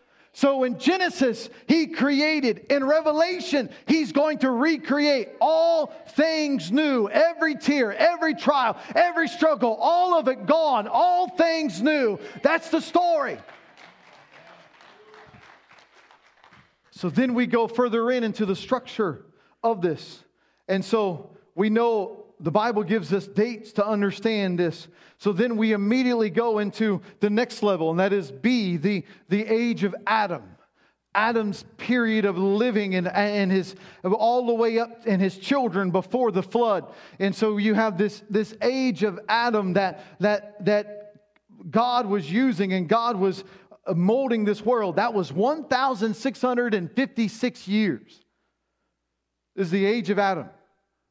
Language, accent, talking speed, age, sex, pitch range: English, American, 140 wpm, 40-59, male, 200-260 Hz